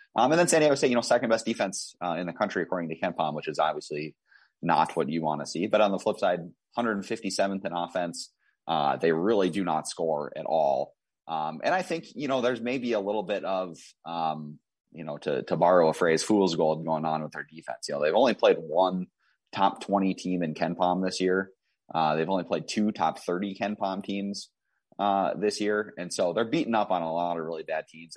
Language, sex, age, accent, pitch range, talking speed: English, male, 30-49, American, 75-100 Hz, 235 wpm